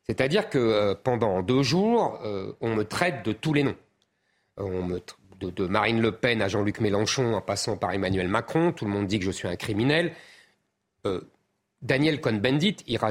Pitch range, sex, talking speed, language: 105-145 Hz, male, 165 wpm, French